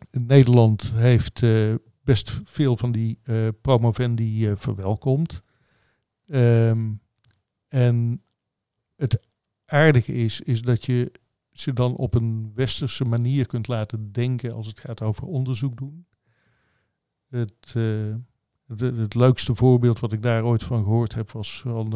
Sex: male